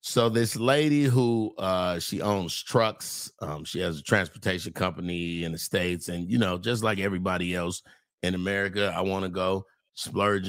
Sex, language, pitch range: male, English, 95-140 Hz